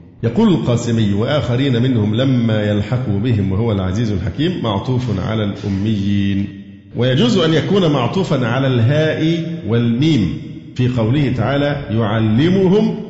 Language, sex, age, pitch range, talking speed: Arabic, male, 50-69, 110-135 Hz, 110 wpm